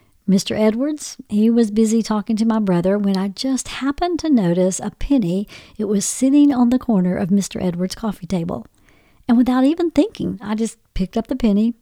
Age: 50-69